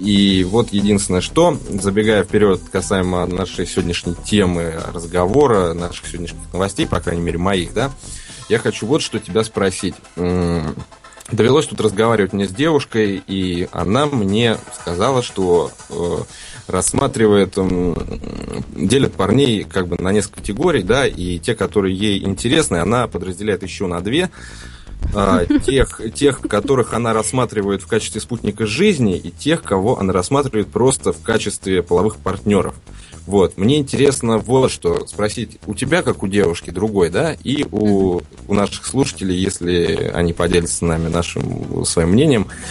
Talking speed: 140 wpm